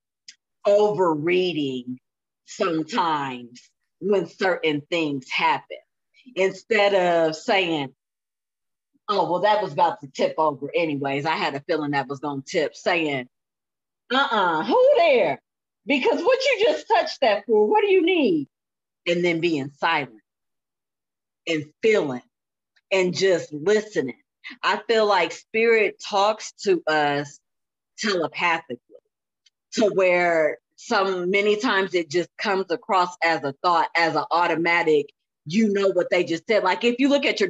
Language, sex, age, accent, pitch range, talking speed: English, female, 40-59, American, 165-220 Hz, 140 wpm